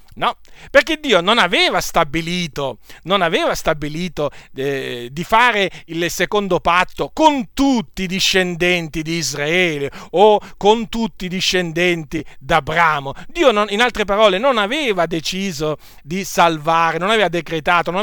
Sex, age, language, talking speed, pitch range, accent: male, 40-59, Italian, 135 wpm, 150-200 Hz, native